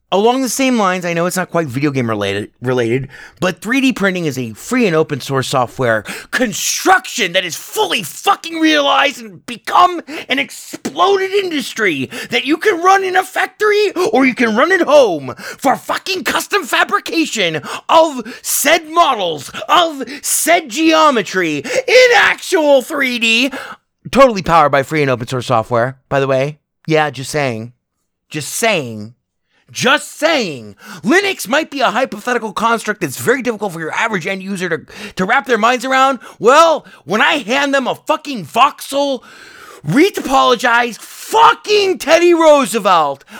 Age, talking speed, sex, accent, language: 30-49, 155 wpm, male, American, English